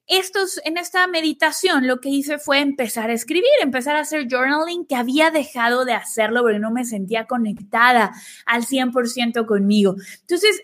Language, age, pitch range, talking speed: Spanish, 20-39, 240-340 Hz, 160 wpm